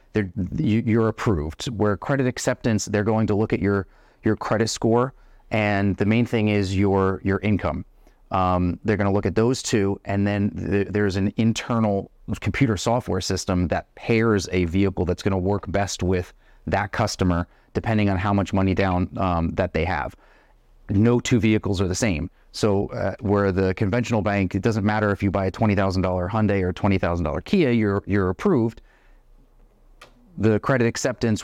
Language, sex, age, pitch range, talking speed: English, male, 30-49, 95-110 Hz, 170 wpm